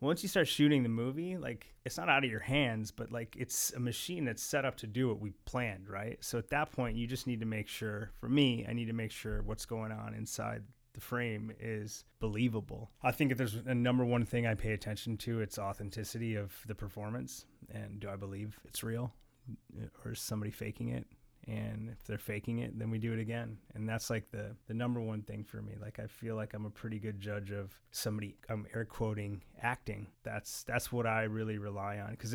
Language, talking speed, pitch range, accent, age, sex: English, 230 wpm, 105-120 Hz, American, 30-49, male